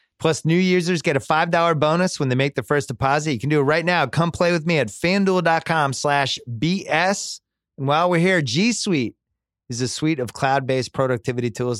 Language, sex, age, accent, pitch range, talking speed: English, male, 30-49, American, 95-135 Hz, 205 wpm